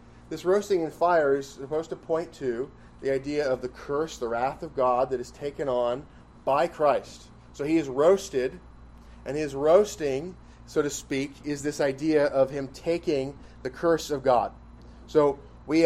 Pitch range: 120-160 Hz